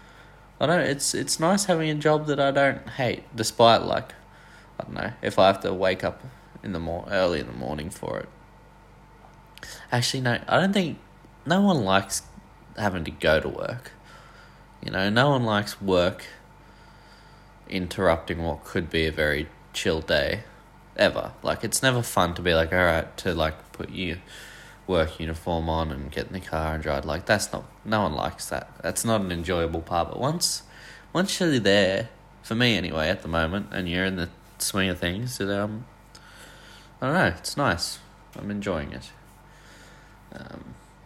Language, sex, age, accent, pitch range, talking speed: English, male, 20-39, Australian, 85-115 Hz, 180 wpm